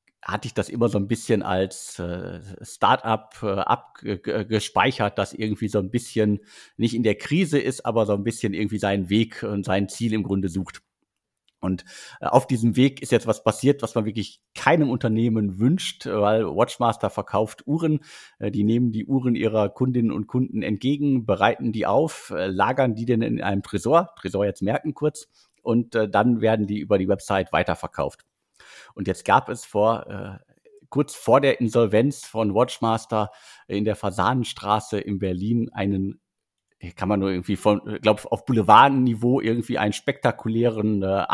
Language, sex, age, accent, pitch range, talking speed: German, male, 50-69, German, 100-120 Hz, 160 wpm